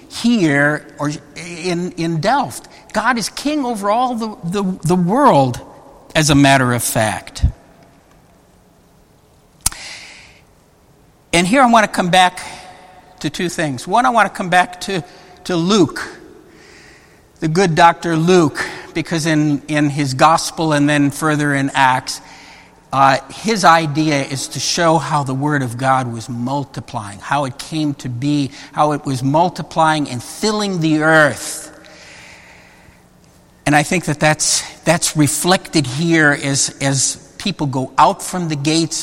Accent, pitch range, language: American, 140-180 Hz, English